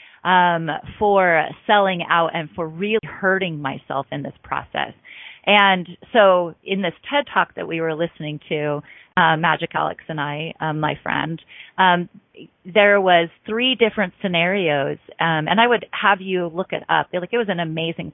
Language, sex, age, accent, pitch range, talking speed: English, female, 30-49, American, 165-200 Hz, 170 wpm